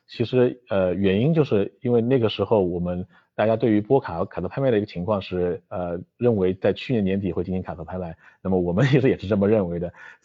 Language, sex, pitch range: Chinese, male, 95-115 Hz